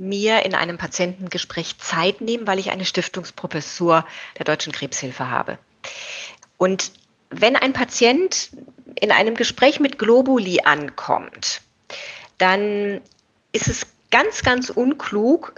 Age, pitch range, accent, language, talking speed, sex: 30-49, 180-240 Hz, German, German, 115 wpm, female